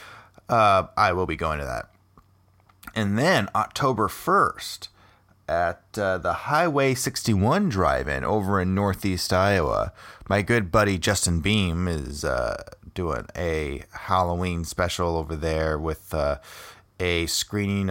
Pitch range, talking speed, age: 85-105 Hz, 125 wpm, 30-49